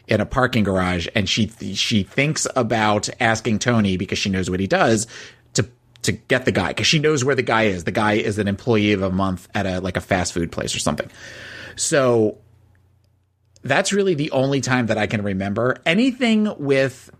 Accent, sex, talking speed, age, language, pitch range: American, male, 200 wpm, 30-49, English, 105-130 Hz